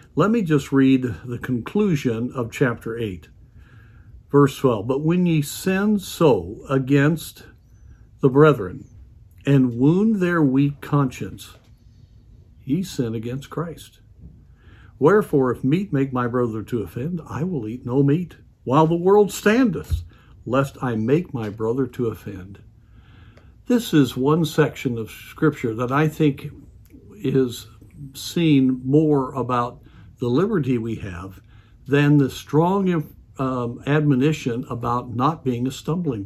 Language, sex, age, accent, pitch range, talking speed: English, male, 60-79, American, 115-150 Hz, 130 wpm